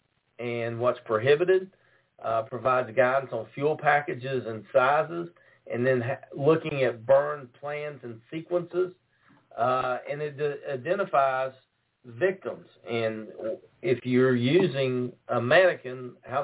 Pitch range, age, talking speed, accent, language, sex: 115-135 Hz, 50-69, 115 wpm, American, English, male